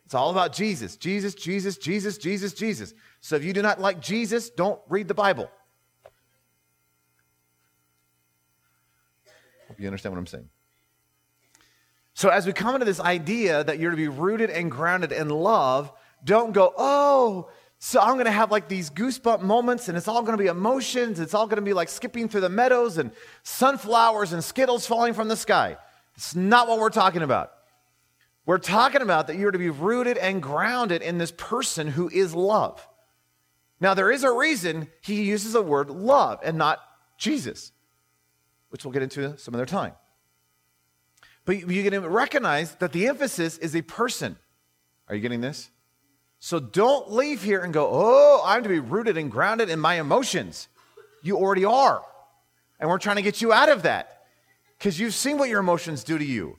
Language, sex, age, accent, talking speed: English, male, 30-49, American, 180 wpm